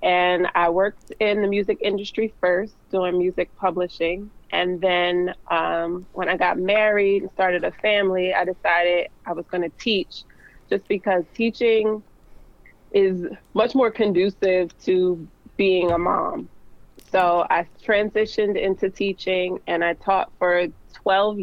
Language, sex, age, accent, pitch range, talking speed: English, female, 20-39, American, 175-205 Hz, 135 wpm